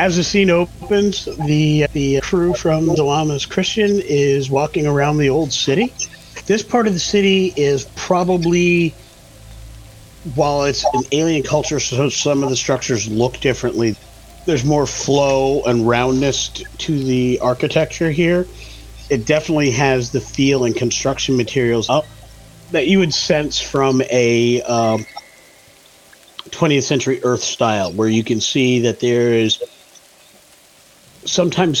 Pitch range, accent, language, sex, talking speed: 115-145 Hz, American, English, male, 140 wpm